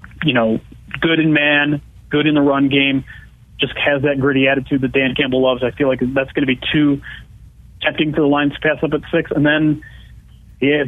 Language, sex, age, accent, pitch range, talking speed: English, male, 30-49, American, 130-165 Hz, 215 wpm